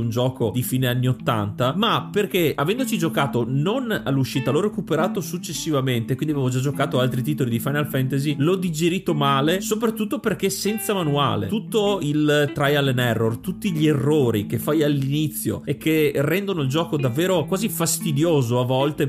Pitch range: 135-175 Hz